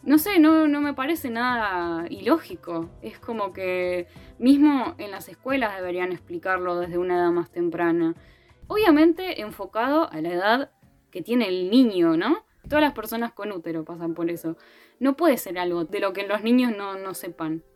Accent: Argentinian